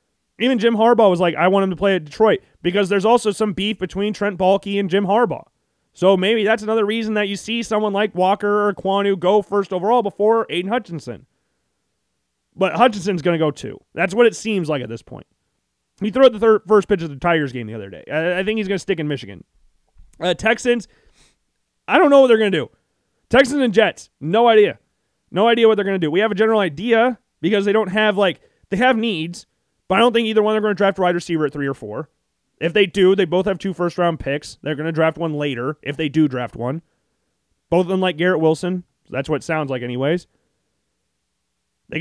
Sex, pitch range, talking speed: male, 155-210 Hz, 235 wpm